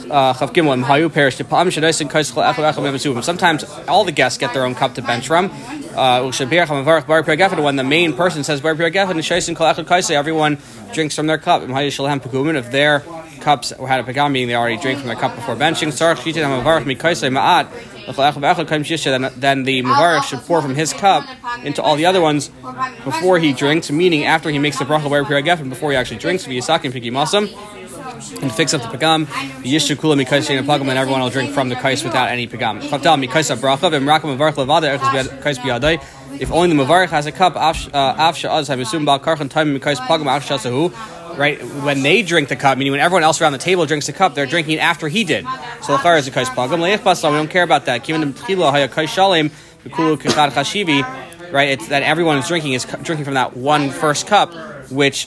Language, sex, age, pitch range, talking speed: English, male, 20-39, 135-165 Hz, 140 wpm